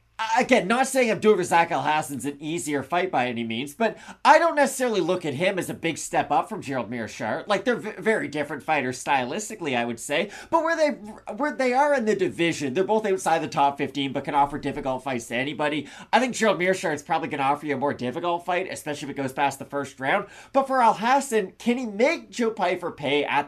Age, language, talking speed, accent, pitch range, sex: 30-49, English, 235 wpm, American, 140-220 Hz, male